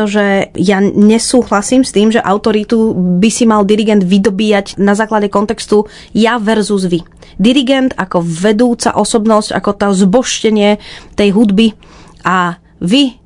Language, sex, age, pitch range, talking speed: Czech, female, 20-39, 190-220 Hz, 130 wpm